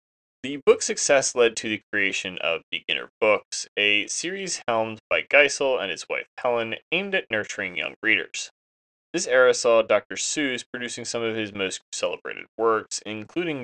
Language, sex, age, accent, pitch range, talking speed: English, male, 20-39, American, 85-130 Hz, 165 wpm